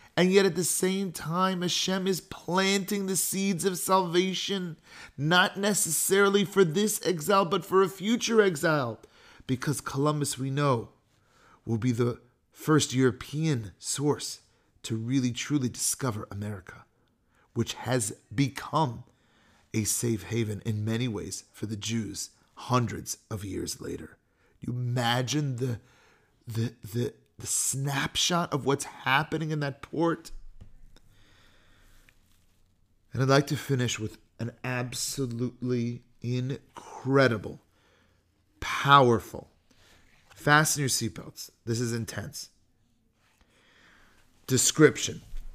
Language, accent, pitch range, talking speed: English, American, 110-150 Hz, 110 wpm